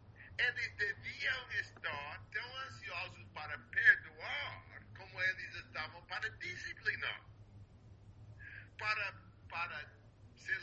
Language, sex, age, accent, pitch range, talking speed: English, male, 50-69, Brazilian, 105-110 Hz, 85 wpm